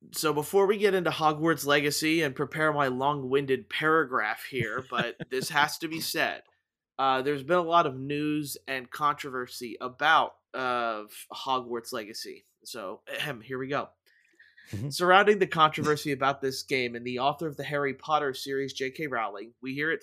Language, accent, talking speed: English, American, 165 wpm